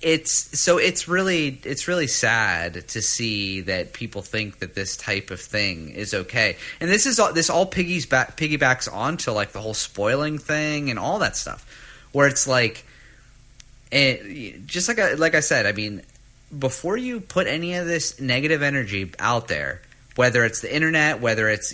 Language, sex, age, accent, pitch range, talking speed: English, male, 30-49, American, 125-160 Hz, 180 wpm